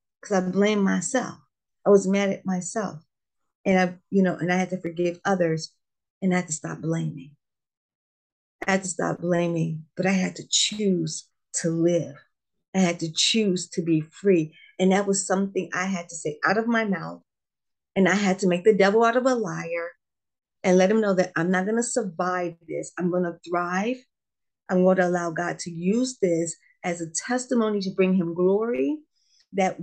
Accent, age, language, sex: American, 40-59, English, female